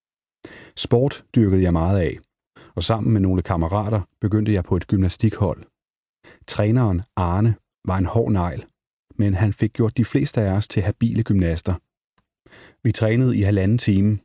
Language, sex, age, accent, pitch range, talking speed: Danish, male, 30-49, native, 95-110 Hz, 155 wpm